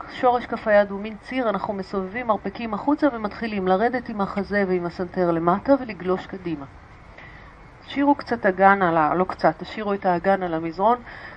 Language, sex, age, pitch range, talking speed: Hebrew, female, 40-59, 180-220 Hz, 160 wpm